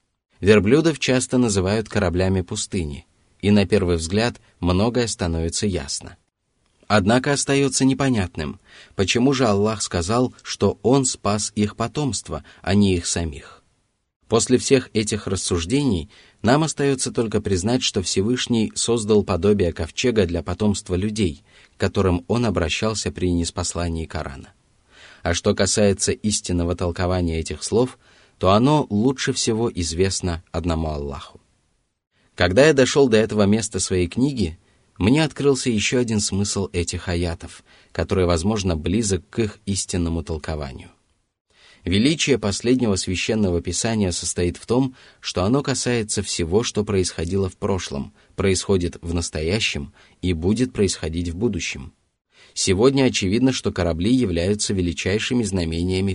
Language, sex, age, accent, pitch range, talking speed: Russian, male, 20-39, native, 90-115 Hz, 125 wpm